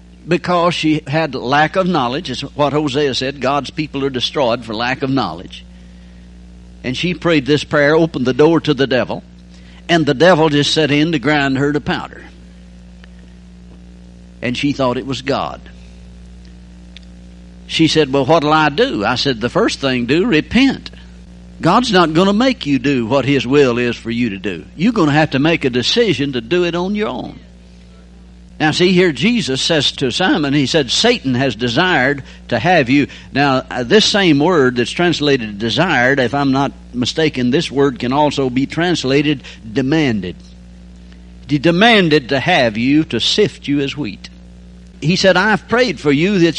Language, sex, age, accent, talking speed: English, male, 60-79, American, 180 wpm